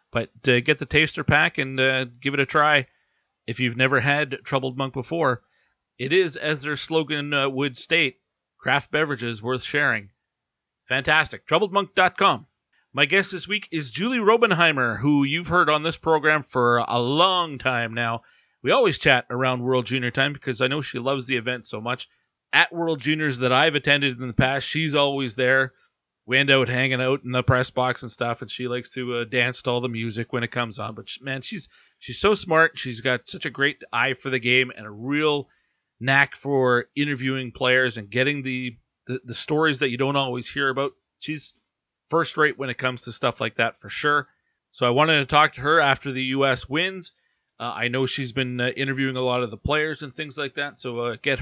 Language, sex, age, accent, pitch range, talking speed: English, male, 40-59, American, 125-150 Hz, 210 wpm